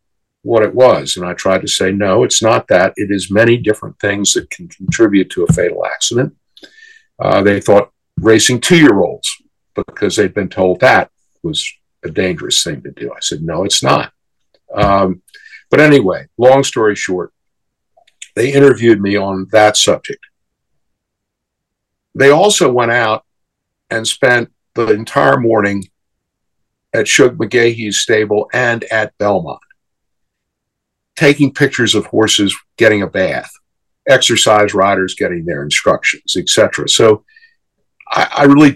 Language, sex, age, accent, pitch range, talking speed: English, male, 50-69, American, 100-135 Hz, 140 wpm